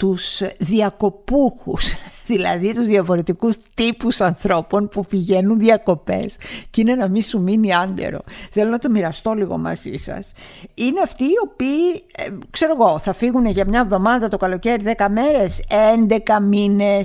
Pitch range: 190-235 Hz